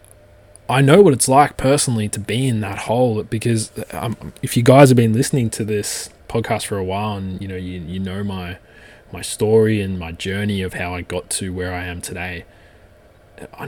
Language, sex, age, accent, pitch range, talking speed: English, male, 20-39, Australian, 90-110 Hz, 205 wpm